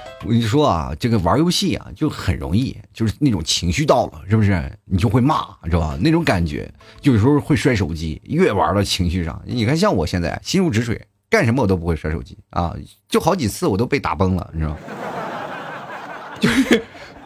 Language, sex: Chinese, male